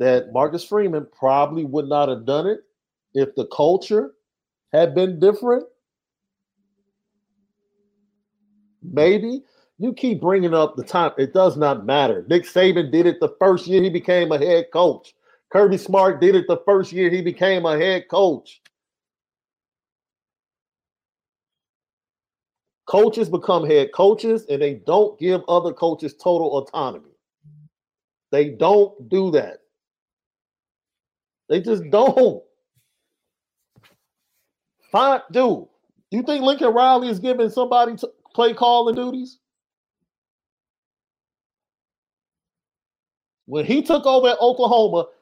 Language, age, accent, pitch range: English, 40-59, American, 170-245 Hz